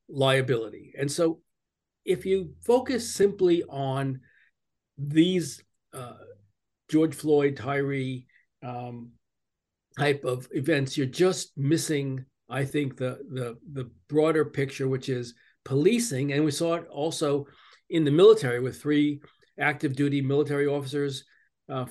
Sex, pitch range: male, 130-155 Hz